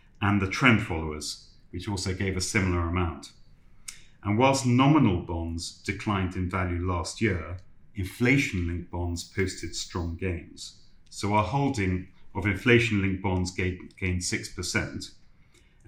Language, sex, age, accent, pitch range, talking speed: English, male, 40-59, British, 90-110 Hz, 120 wpm